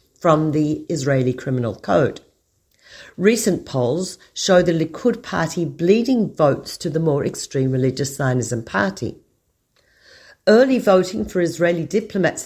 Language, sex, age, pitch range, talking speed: Hebrew, female, 50-69, 145-195 Hz, 120 wpm